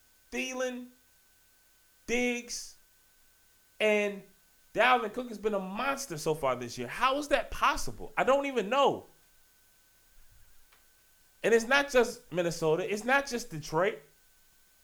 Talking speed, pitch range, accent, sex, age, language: 120 wpm, 140-220 Hz, American, male, 20-39, English